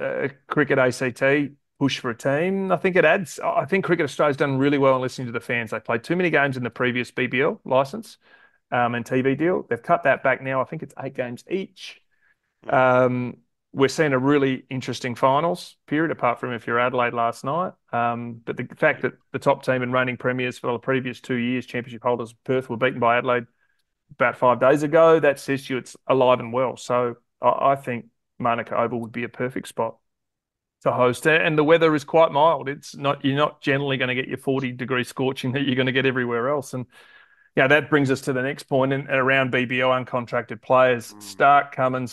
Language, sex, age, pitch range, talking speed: English, male, 30-49, 120-140 Hz, 215 wpm